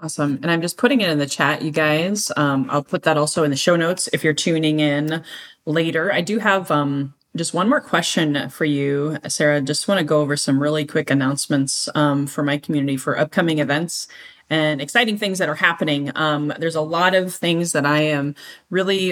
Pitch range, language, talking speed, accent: 150-185 Hz, English, 215 wpm, American